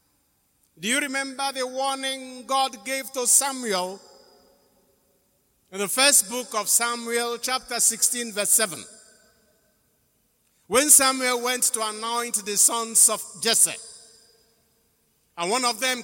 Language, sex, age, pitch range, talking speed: English, male, 60-79, 160-245 Hz, 120 wpm